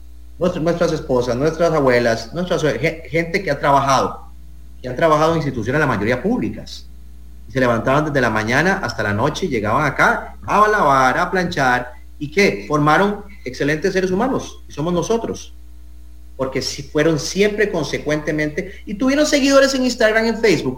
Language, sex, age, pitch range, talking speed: English, male, 30-49, 110-180 Hz, 155 wpm